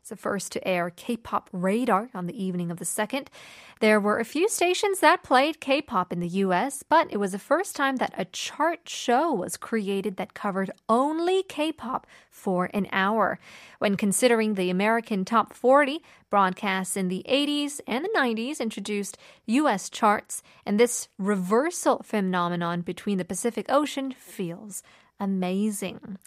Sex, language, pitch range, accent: female, Korean, 195-255 Hz, American